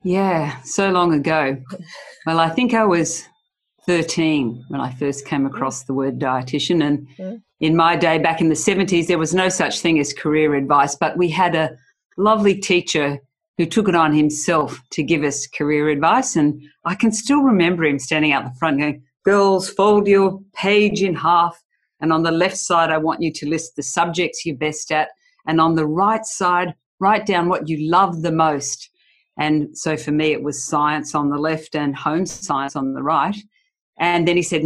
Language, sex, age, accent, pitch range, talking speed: English, female, 50-69, Australian, 150-185 Hz, 195 wpm